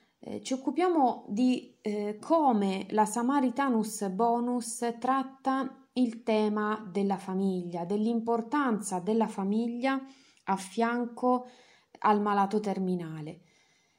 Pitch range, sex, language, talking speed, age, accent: 190-235 Hz, female, Italian, 95 wpm, 30-49, native